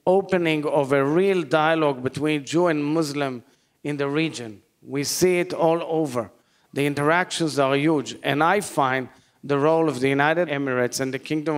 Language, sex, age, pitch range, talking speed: English, male, 40-59, 135-165 Hz, 170 wpm